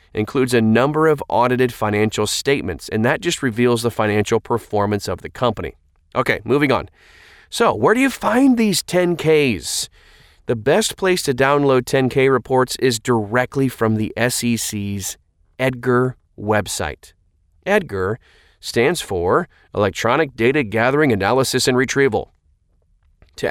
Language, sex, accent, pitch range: English, male, American, 100-130 Hz